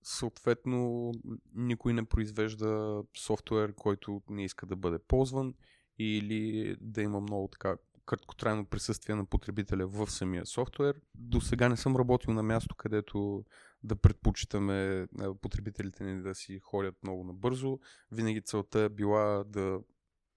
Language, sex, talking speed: Bulgarian, male, 135 wpm